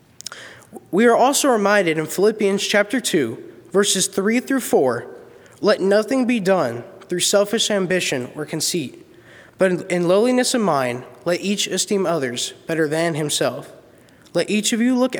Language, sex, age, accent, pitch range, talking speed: English, male, 20-39, American, 165-225 Hz, 150 wpm